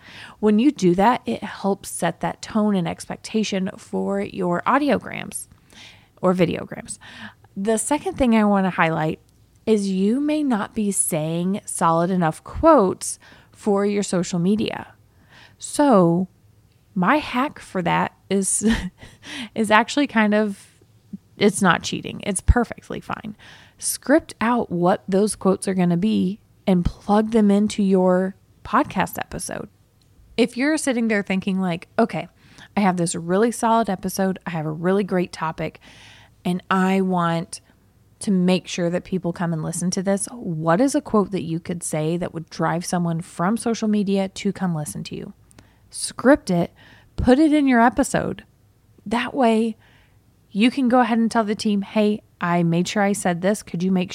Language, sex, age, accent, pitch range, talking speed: English, female, 20-39, American, 175-220 Hz, 165 wpm